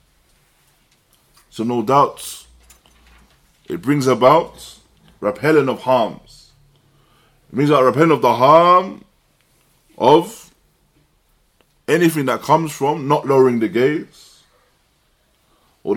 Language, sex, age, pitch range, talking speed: English, male, 20-39, 110-155 Hz, 100 wpm